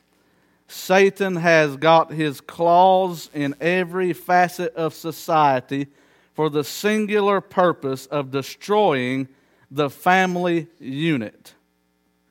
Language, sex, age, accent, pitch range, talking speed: English, male, 50-69, American, 140-175 Hz, 95 wpm